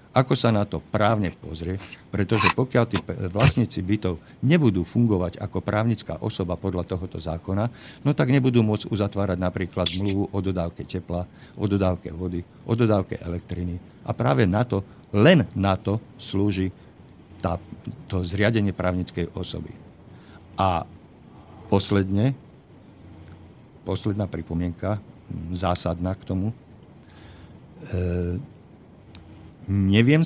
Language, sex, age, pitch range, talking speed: Slovak, male, 50-69, 90-110 Hz, 115 wpm